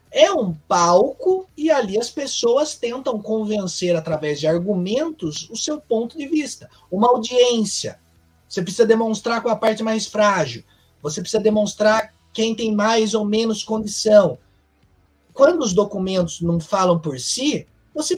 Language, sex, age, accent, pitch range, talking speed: Portuguese, male, 20-39, Brazilian, 160-245 Hz, 145 wpm